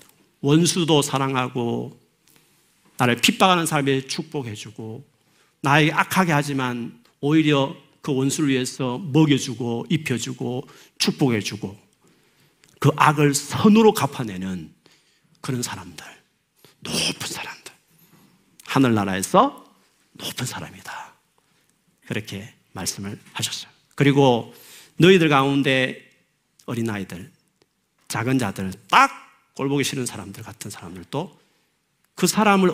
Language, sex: Korean, male